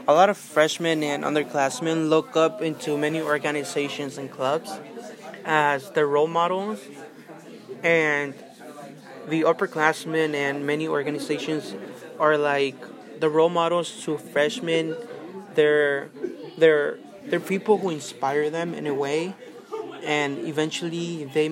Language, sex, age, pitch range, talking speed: English, male, 20-39, 145-165 Hz, 115 wpm